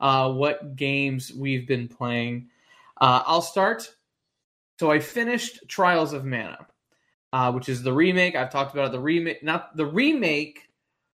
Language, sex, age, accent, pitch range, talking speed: English, male, 20-39, American, 130-170 Hz, 155 wpm